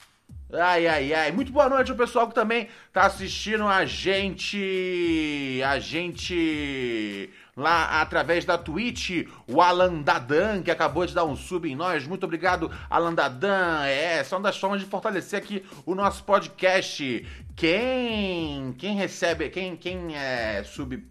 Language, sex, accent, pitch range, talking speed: Portuguese, male, Brazilian, 155-200 Hz, 155 wpm